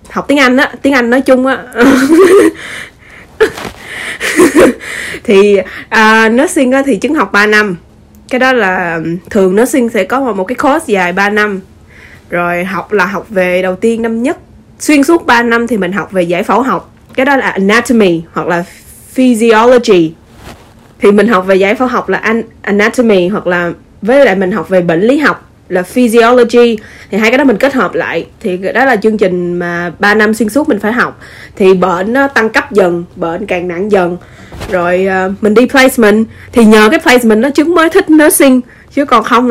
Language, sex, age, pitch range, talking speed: Vietnamese, female, 20-39, 185-255 Hz, 190 wpm